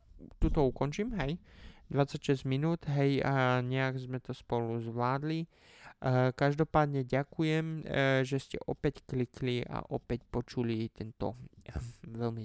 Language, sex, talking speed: Slovak, male, 110 wpm